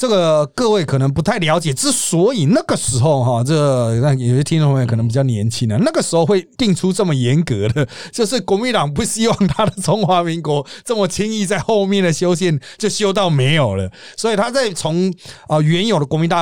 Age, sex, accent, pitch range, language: 30-49, male, native, 125-170 Hz, Chinese